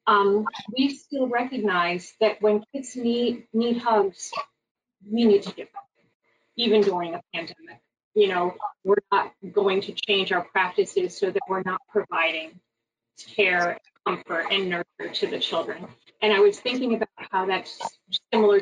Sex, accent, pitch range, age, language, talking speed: female, American, 195-265 Hz, 30-49, English, 155 wpm